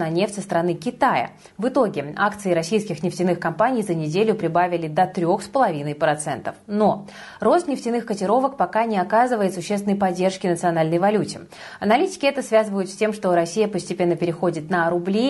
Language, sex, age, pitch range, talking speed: Russian, female, 20-39, 175-230 Hz, 150 wpm